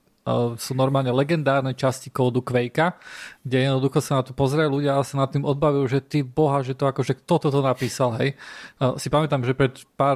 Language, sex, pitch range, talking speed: Slovak, male, 135-160 Hz, 215 wpm